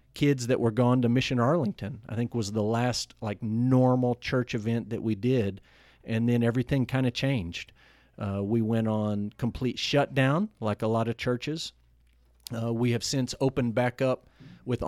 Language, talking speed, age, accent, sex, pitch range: English, 175 wpm, 50-69, American, male, 110-130 Hz